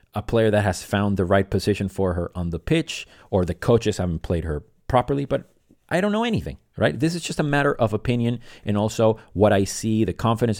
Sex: male